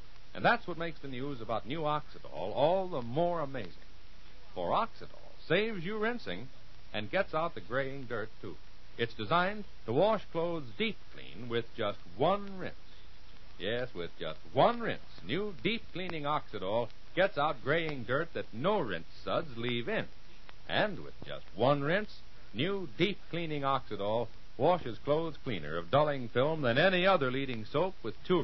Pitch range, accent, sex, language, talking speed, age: 105-175 Hz, American, male, English, 160 wpm, 60-79